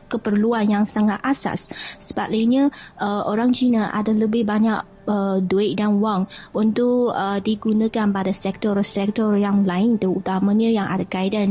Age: 20-39